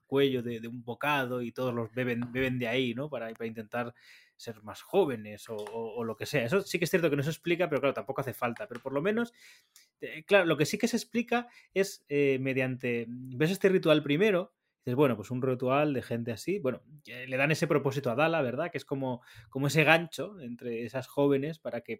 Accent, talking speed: Spanish, 230 wpm